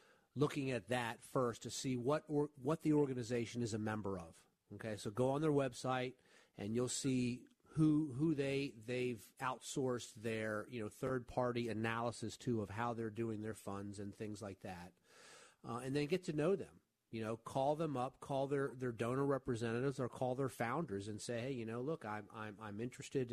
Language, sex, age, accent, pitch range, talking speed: English, male, 40-59, American, 110-130 Hz, 200 wpm